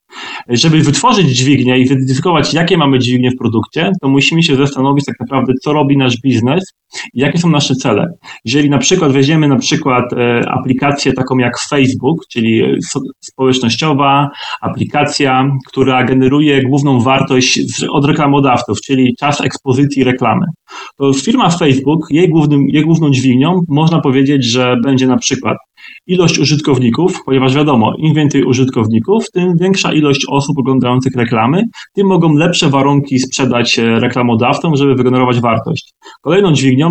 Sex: male